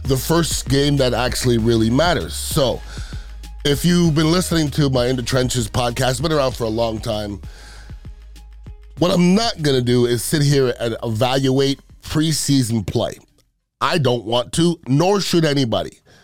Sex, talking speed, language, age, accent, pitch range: male, 160 wpm, English, 30-49, American, 120-165 Hz